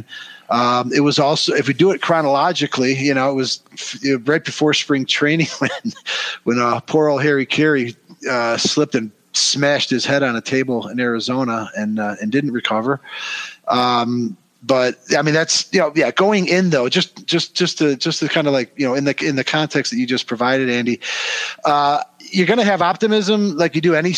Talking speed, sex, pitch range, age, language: 205 wpm, male, 130-160 Hz, 40-59, English